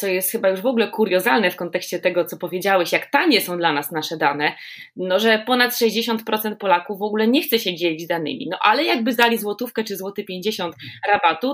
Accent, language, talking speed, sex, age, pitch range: native, Polish, 215 wpm, female, 20-39, 175-225 Hz